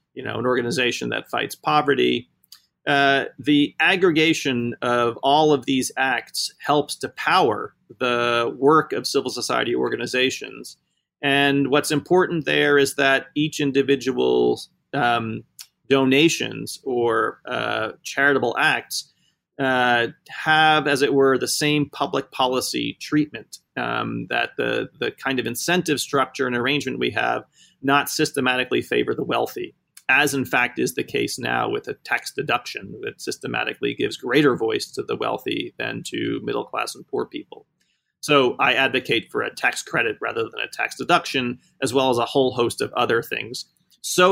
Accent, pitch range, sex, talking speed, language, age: American, 125-155 Hz, male, 155 wpm, English, 30-49